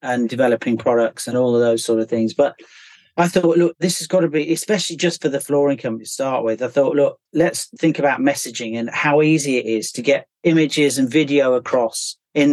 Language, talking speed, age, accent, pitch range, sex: English, 225 wpm, 40-59, British, 120-155 Hz, male